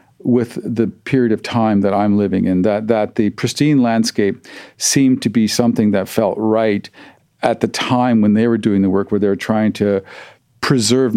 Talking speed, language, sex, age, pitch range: 195 wpm, English, male, 50-69, 100-120 Hz